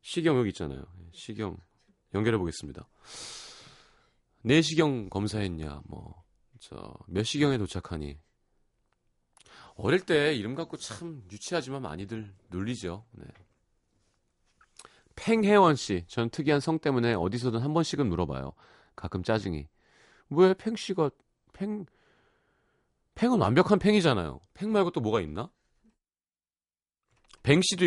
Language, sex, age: Korean, male, 40-59